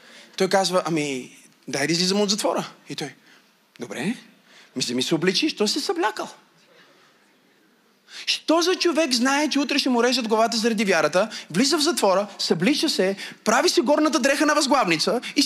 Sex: male